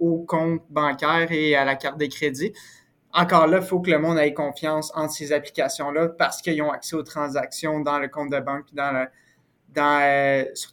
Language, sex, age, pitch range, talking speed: French, male, 20-39, 145-165 Hz, 200 wpm